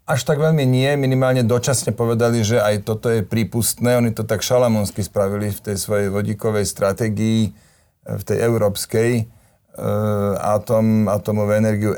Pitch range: 100-110 Hz